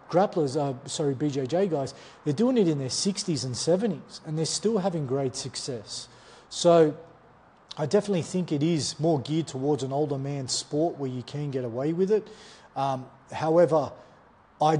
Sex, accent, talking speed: male, Australian, 170 wpm